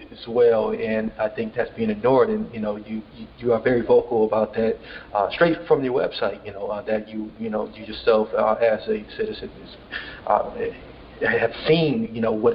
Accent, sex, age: American, male, 40-59